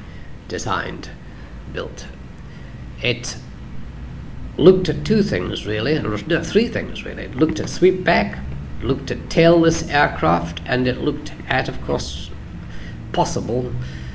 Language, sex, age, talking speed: English, male, 50-69, 120 wpm